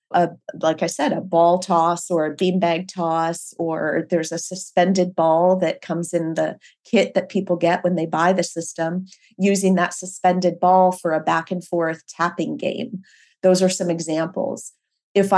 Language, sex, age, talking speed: English, female, 30-49, 170 wpm